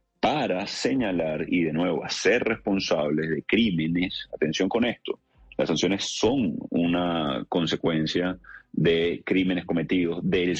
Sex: male